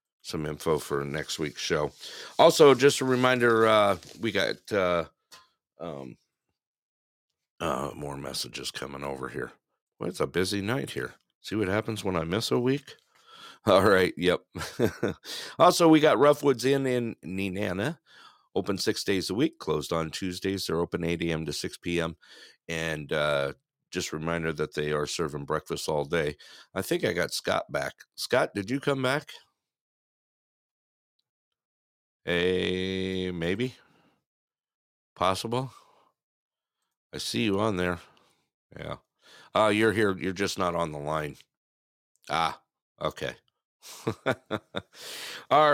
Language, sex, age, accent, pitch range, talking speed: English, male, 50-69, American, 80-125 Hz, 135 wpm